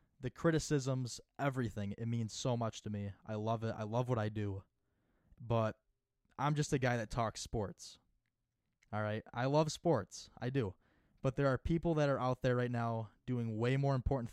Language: English